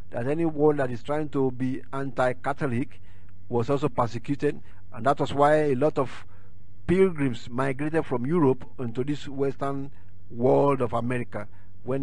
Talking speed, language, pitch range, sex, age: 145 wpm, English, 120-155 Hz, male, 50-69